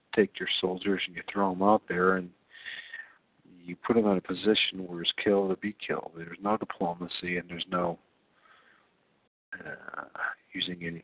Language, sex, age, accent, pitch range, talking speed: English, male, 50-69, American, 90-105 Hz, 170 wpm